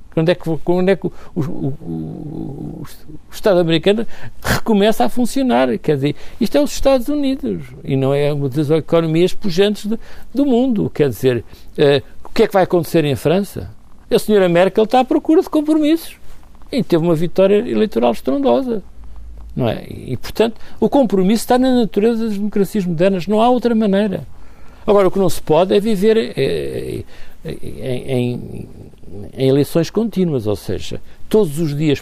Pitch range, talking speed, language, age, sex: 135-215 Hz, 175 wpm, Portuguese, 60-79, male